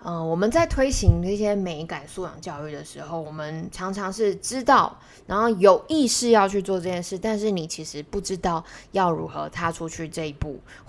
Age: 20-39